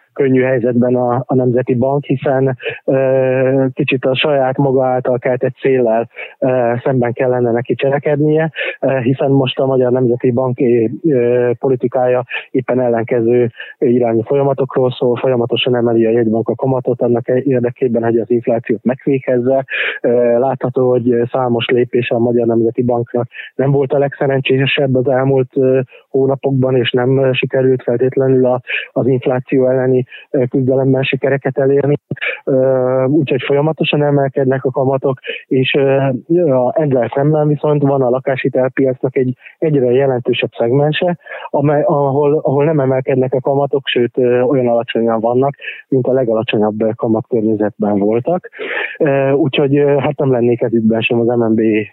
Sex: male